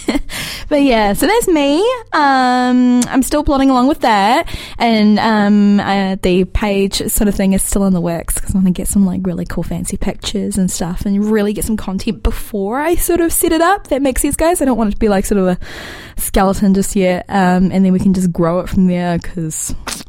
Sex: female